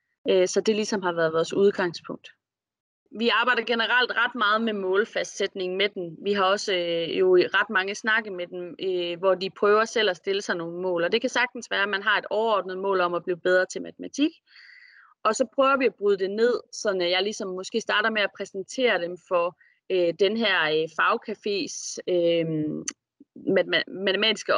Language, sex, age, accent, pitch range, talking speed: Danish, female, 30-49, native, 180-220 Hz, 180 wpm